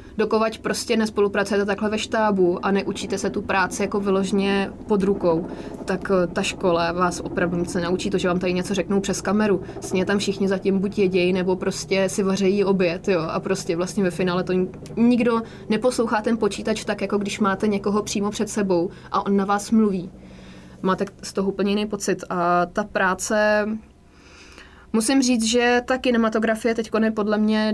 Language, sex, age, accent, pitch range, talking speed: English, female, 20-39, Czech, 185-210 Hz, 185 wpm